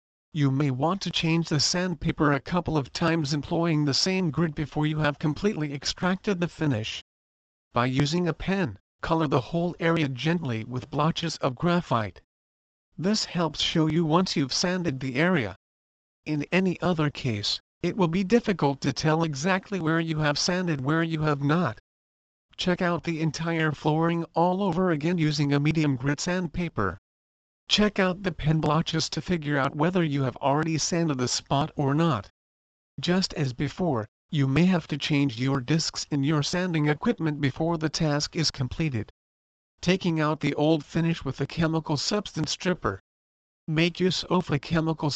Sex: male